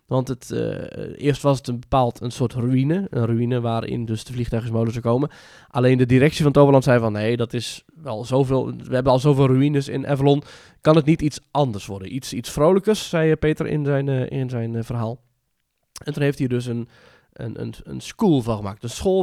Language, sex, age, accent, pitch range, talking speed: Dutch, male, 20-39, Dutch, 120-150 Hz, 210 wpm